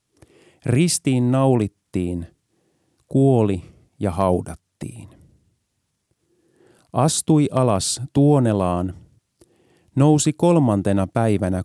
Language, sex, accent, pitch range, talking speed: Finnish, male, native, 100-140 Hz, 55 wpm